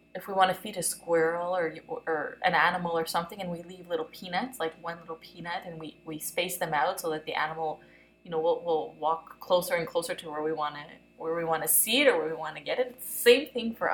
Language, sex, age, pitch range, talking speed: English, female, 20-39, 160-200 Hz, 275 wpm